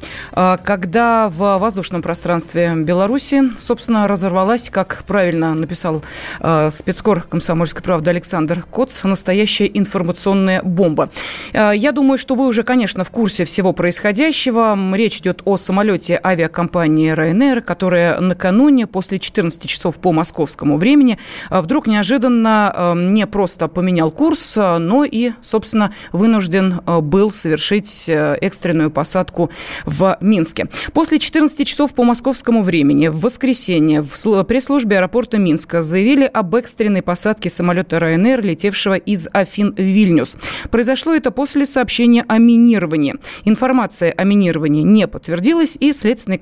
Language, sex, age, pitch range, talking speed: Russian, female, 30-49, 175-235 Hz, 125 wpm